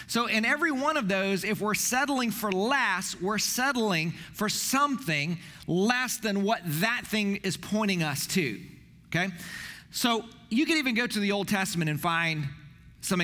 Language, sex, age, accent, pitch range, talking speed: English, male, 40-59, American, 160-215 Hz, 170 wpm